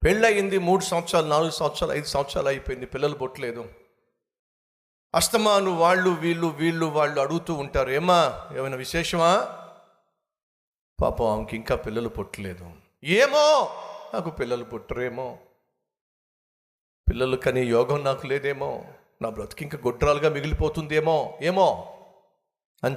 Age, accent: 50-69, native